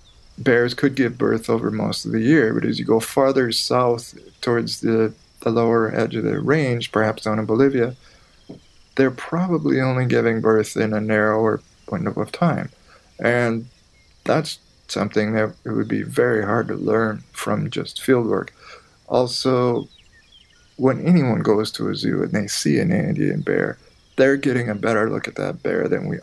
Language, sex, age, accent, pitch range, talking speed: English, male, 20-39, American, 110-130 Hz, 175 wpm